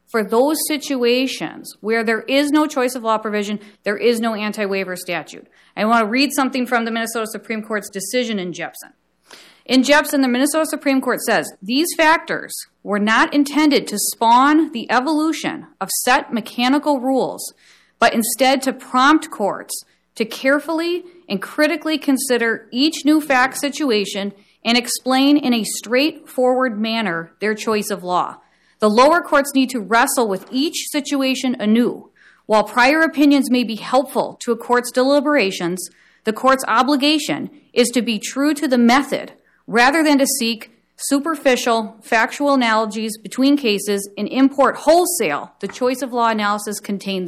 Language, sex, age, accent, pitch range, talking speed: English, female, 40-59, American, 220-280 Hz, 155 wpm